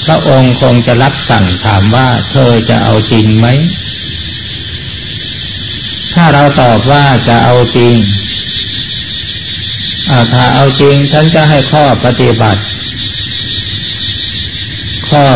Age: 60-79